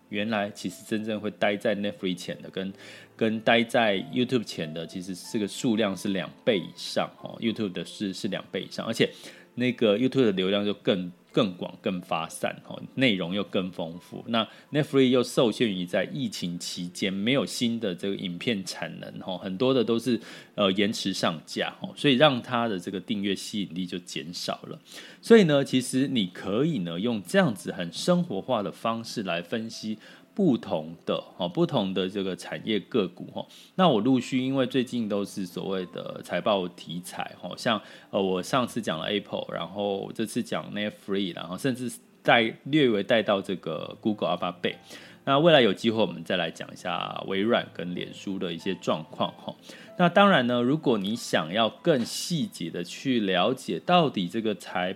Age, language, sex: 30-49, Chinese, male